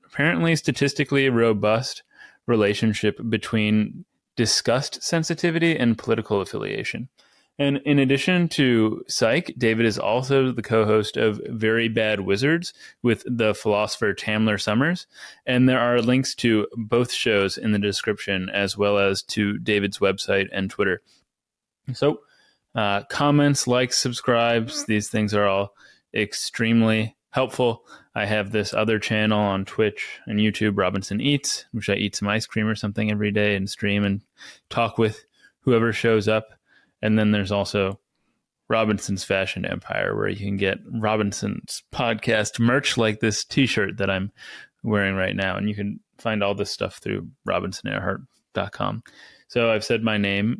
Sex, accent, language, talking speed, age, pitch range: male, American, English, 145 wpm, 20-39, 105-120 Hz